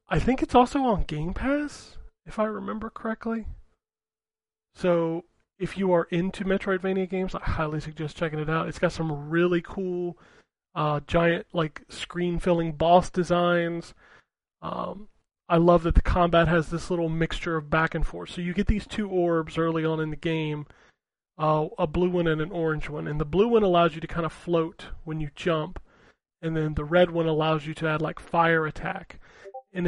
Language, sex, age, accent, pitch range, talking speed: English, male, 30-49, American, 160-180 Hz, 190 wpm